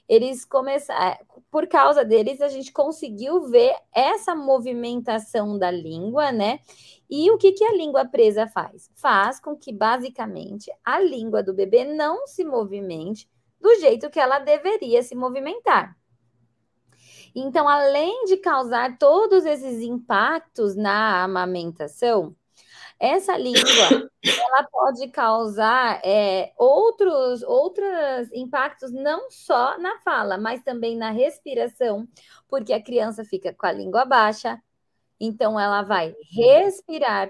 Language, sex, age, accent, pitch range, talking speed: Portuguese, female, 20-39, Brazilian, 215-295 Hz, 120 wpm